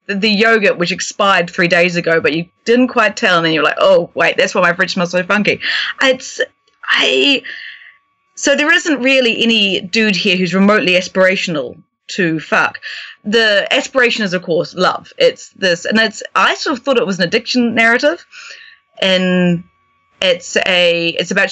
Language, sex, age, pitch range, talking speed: English, female, 30-49, 175-235 Hz, 175 wpm